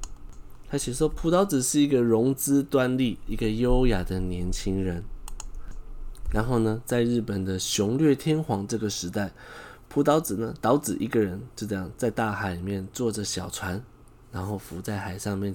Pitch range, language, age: 100-140 Hz, Chinese, 20-39